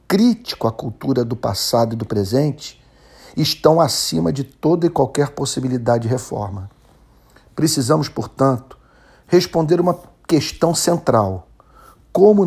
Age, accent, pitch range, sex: 50-69, Brazilian, 120-160 Hz, male